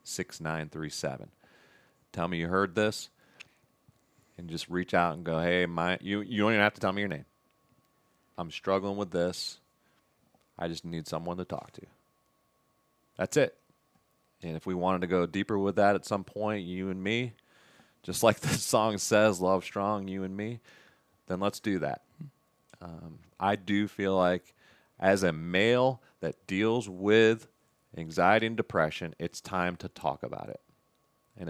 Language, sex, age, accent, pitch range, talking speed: English, male, 30-49, American, 85-105 Hz, 170 wpm